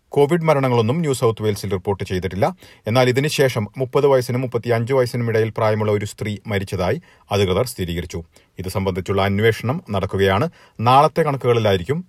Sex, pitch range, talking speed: male, 105-135 Hz, 120 wpm